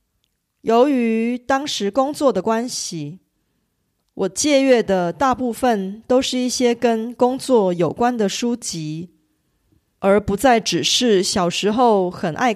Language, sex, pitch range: Korean, female, 185-250 Hz